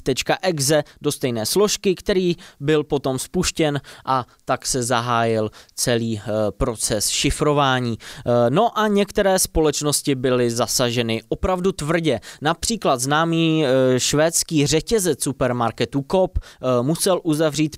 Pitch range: 130-165 Hz